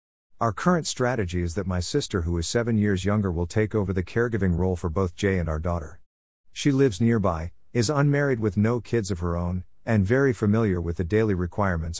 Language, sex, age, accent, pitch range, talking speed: English, male, 50-69, American, 85-115 Hz, 210 wpm